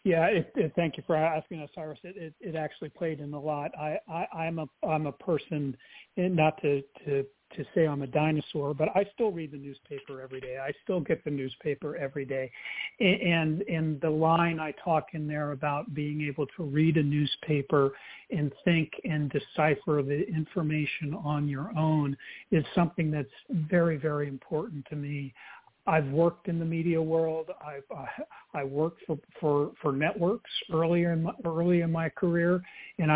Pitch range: 145-170 Hz